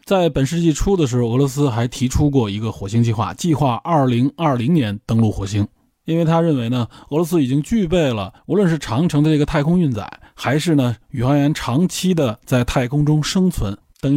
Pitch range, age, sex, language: 115-155 Hz, 20-39, male, Chinese